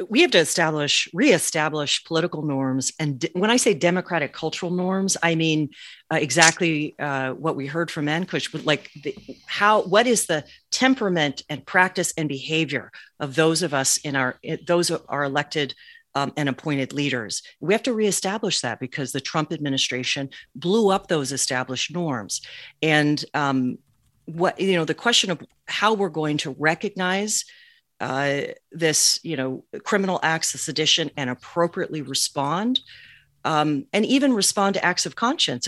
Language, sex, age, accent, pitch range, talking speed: English, female, 40-59, American, 140-180 Hz, 160 wpm